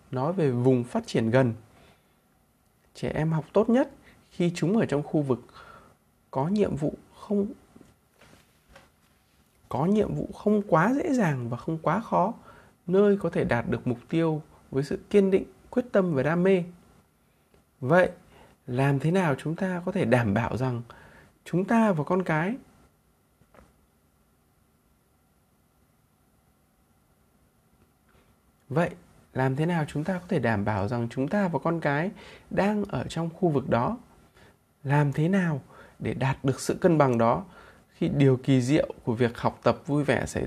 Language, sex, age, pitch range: Vietnamese, male, 20-39, 125-185 Hz